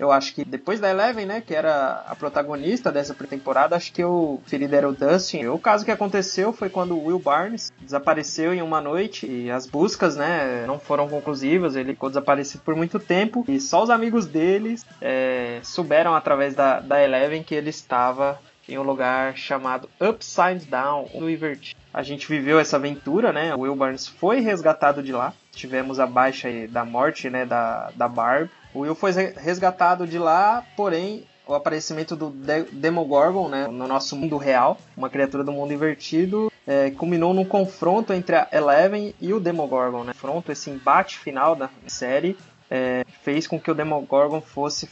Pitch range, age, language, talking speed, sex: 140-180 Hz, 20-39, Portuguese, 185 wpm, male